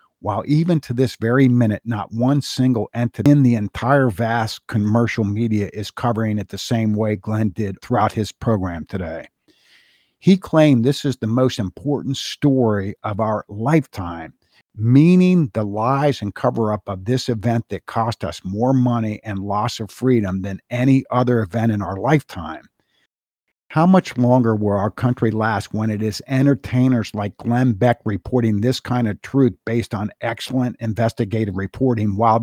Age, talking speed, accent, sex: 50-69, 165 wpm, American, male